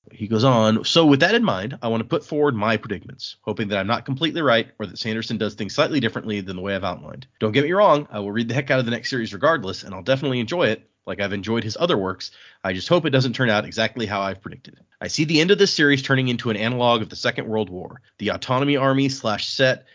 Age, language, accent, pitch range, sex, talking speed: 30-49, English, American, 105-135 Hz, male, 275 wpm